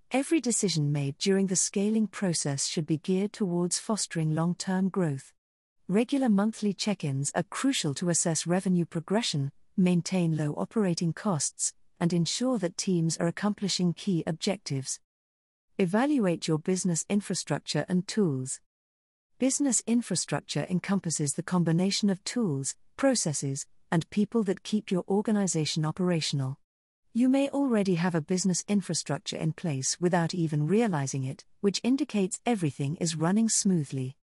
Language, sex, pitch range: English, female, 155-210 Hz